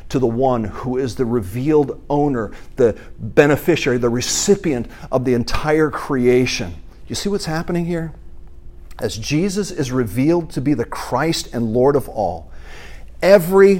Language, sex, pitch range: English, male, 110-170 Hz